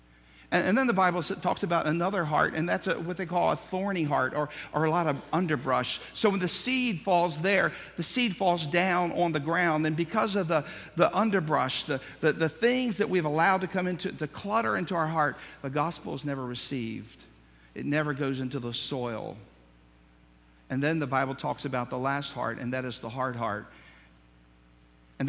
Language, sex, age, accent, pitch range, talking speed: English, male, 50-69, American, 125-175 Hz, 200 wpm